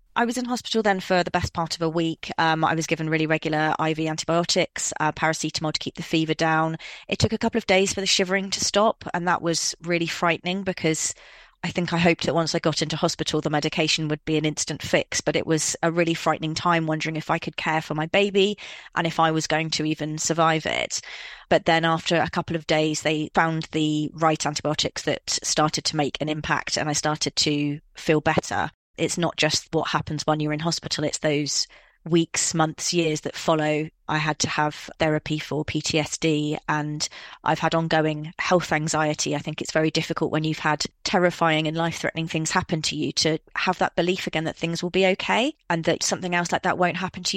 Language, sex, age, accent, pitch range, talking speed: English, female, 30-49, British, 155-170 Hz, 220 wpm